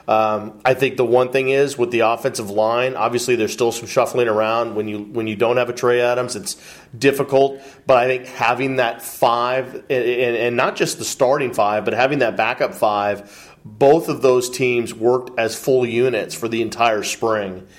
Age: 40-59